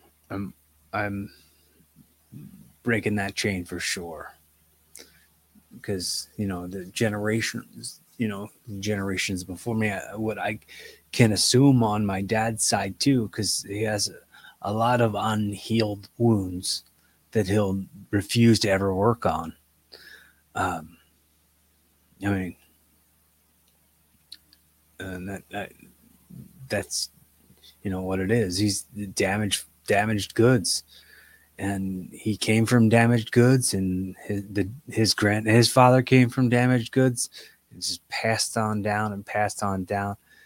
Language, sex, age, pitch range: English, male, 30-49, 90-115 Hz